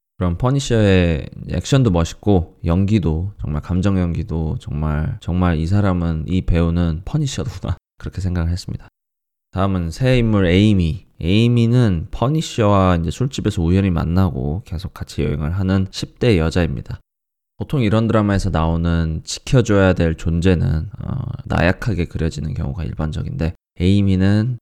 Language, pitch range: Korean, 85-115 Hz